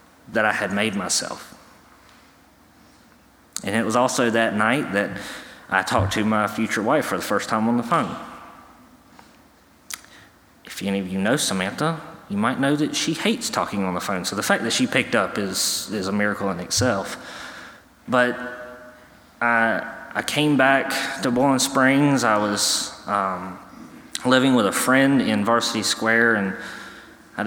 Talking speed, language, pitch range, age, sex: 160 wpm, English, 100-125 Hz, 20-39, male